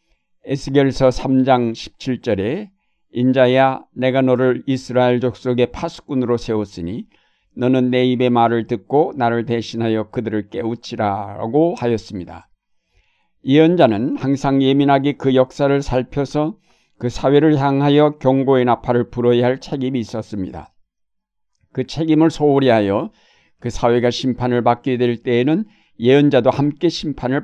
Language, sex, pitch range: Korean, male, 115-140 Hz